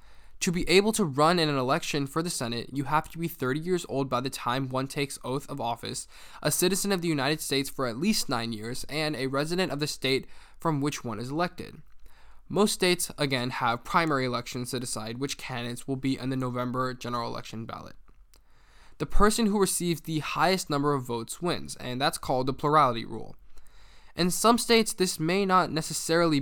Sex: male